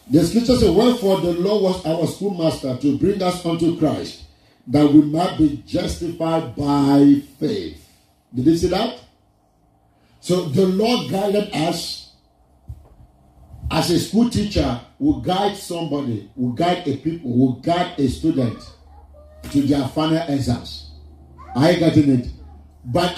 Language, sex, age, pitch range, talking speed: English, male, 50-69, 140-190 Hz, 140 wpm